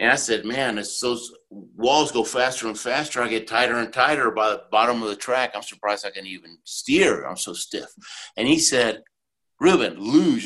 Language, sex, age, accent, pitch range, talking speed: English, male, 50-69, American, 110-160 Hz, 205 wpm